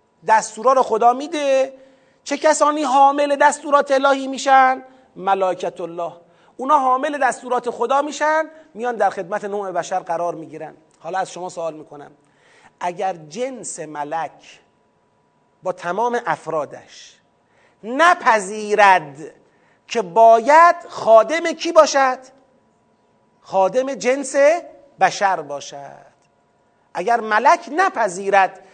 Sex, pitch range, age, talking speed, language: male, 205-285 Hz, 30-49, 100 wpm, Persian